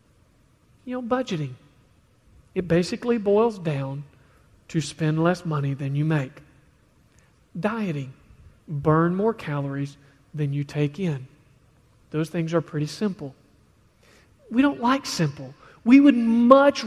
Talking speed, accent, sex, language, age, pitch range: 120 wpm, American, male, English, 40-59, 140-225 Hz